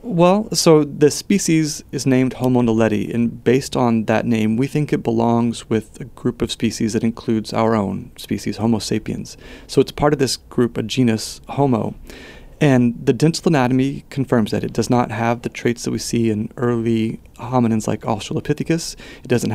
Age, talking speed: 30-49, 185 wpm